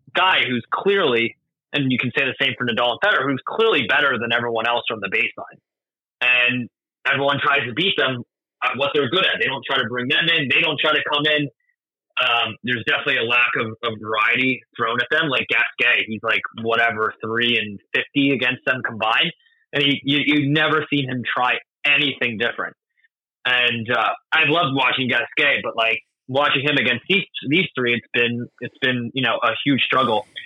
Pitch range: 120-150 Hz